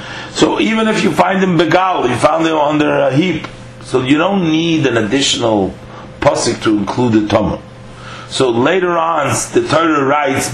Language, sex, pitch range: English, male, 115-165 Hz